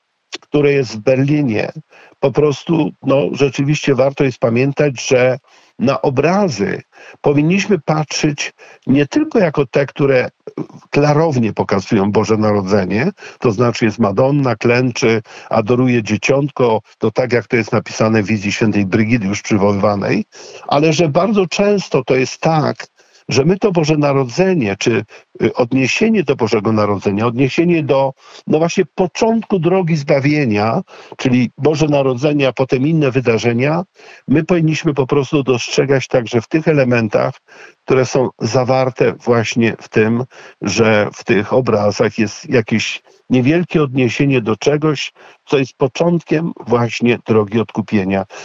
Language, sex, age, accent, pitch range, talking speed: Polish, male, 50-69, native, 115-155 Hz, 130 wpm